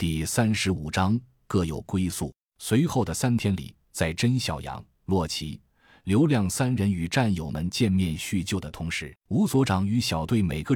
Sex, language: male, Chinese